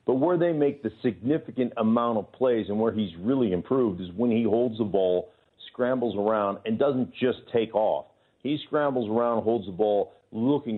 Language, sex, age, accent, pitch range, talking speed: English, male, 50-69, American, 100-125 Hz, 190 wpm